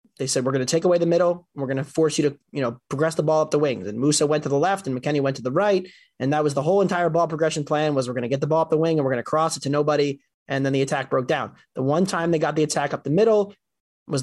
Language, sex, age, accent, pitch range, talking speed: English, male, 20-39, American, 140-175 Hz, 340 wpm